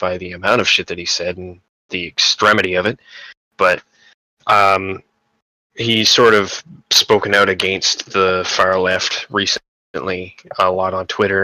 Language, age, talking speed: English, 20-39, 145 wpm